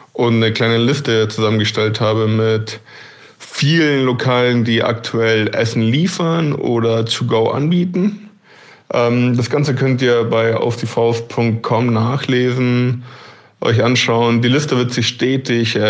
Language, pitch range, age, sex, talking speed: German, 110-125 Hz, 20-39, male, 115 wpm